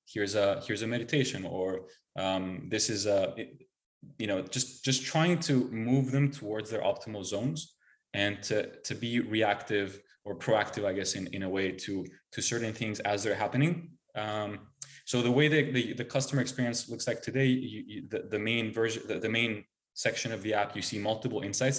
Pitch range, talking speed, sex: 100-125 Hz, 195 wpm, male